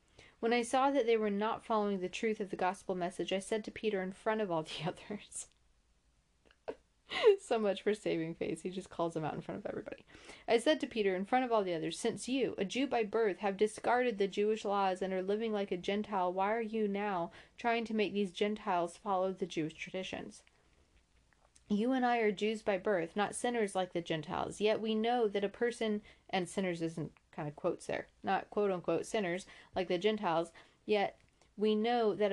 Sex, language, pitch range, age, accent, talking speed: female, English, 180-220 Hz, 30-49, American, 210 wpm